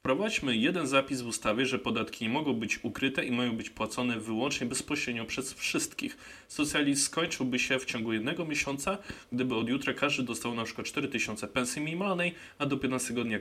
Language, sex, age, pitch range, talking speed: Polish, male, 20-39, 100-130 Hz, 180 wpm